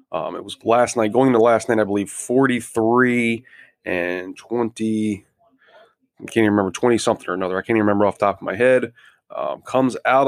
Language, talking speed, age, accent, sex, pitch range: English, 205 wpm, 30-49, American, male, 105-125 Hz